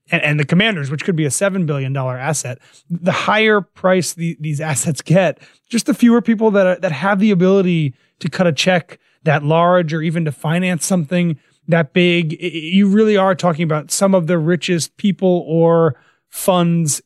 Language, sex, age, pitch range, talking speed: English, male, 30-49, 150-175 Hz, 195 wpm